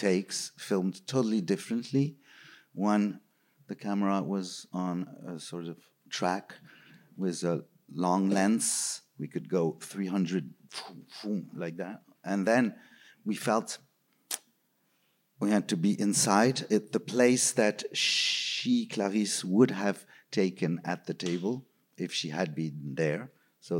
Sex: male